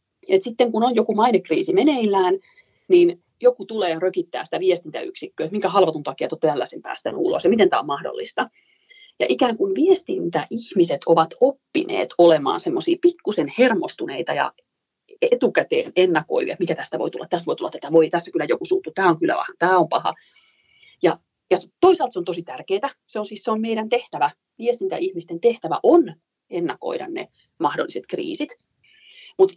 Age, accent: 30-49, native